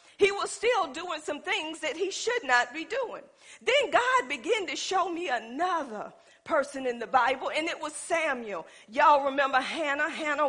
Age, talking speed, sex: 50-69, 175 wpm, female